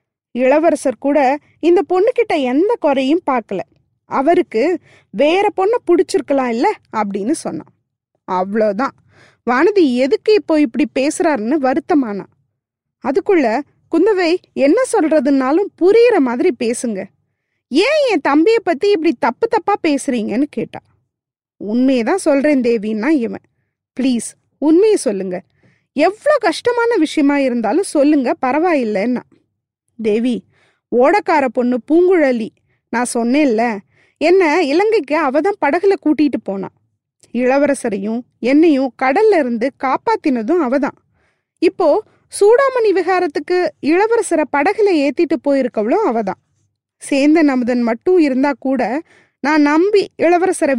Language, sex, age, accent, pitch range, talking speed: Tamil, female, 20-39, native, 245-360 Hz, 100 wpm